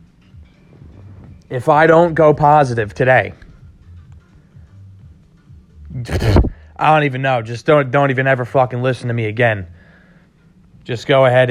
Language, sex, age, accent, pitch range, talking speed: English, male, 30-49, American, 95-135 Hz, 120 wpm